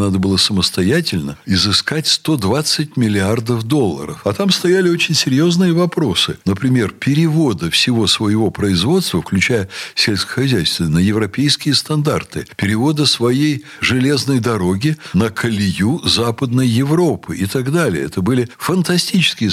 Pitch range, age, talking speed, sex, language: 100-155 Hz, 60-79, 115 wpm, male, Russian